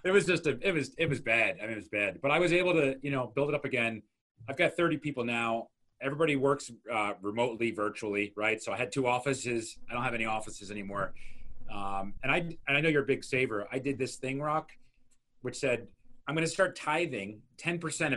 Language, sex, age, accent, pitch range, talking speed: English, male, 30-49, American, 115-150 Hz, 230 wpm